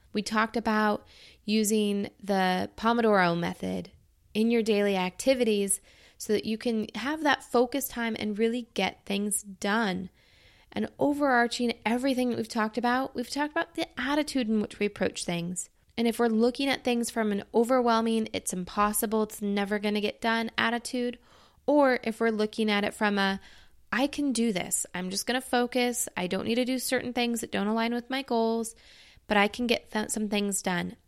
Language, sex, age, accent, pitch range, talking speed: English, female, 20-39, American, 205-245 Hz, 185 wpm